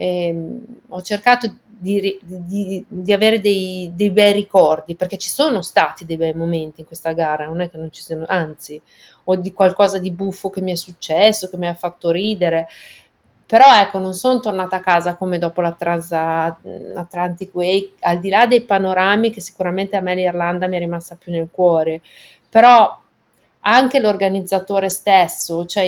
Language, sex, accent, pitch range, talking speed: Italian, female, native, 170-200 Hz, 175 wpm